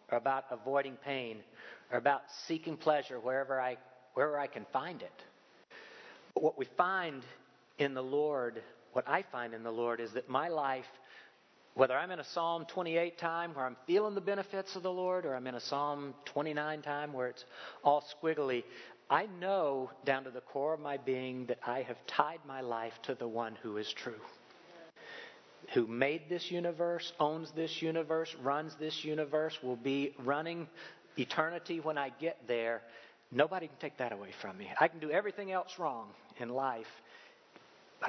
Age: 50-69